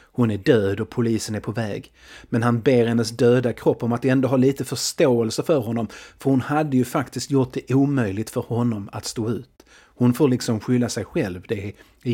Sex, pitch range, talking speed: male, 110-130 Hz, 215 wpm